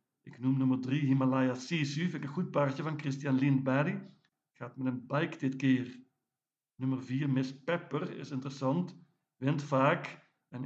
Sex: male